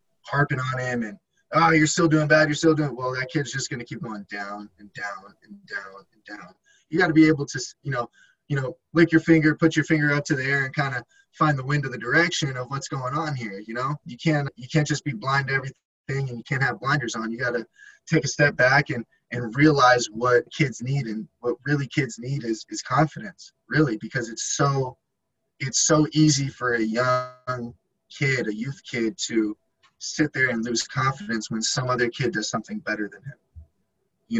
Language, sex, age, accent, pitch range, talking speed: English, male, 10-29, American, 120-150 Hz, 225 wpm